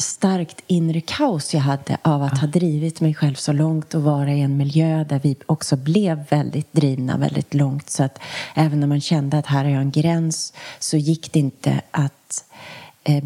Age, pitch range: 30-49, 140-165 Hz